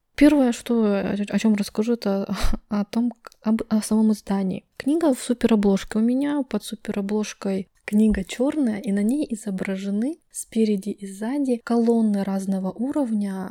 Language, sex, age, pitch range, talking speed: Russian, female, 20-39, 195-235 Hz, 140 wpm